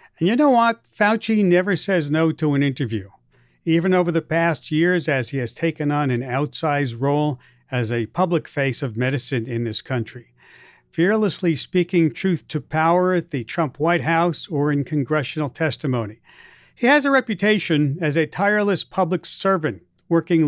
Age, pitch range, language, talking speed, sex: 50-69, 140-190 Hz, English, 165 wpm, male